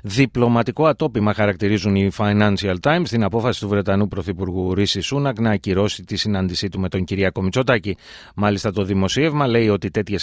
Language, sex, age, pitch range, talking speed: Greek, male, 30-49, 100-135 Hz, 165 wpm